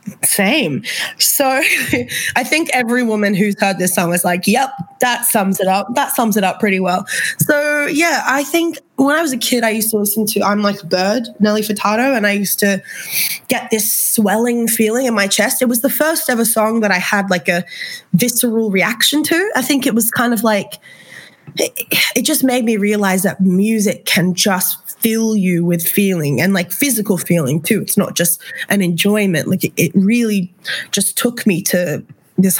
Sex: female